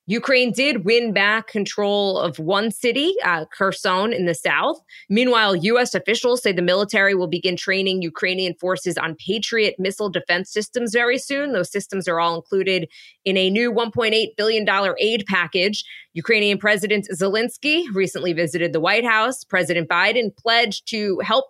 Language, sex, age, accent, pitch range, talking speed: English, female, 20-39, American, 180-230 Hz, 160 wpm